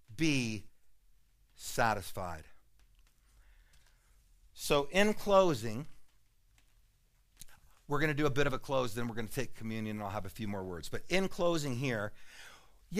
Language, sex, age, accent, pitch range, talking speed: English, male, 50-69, American, 110-150 Hz, 150 wpm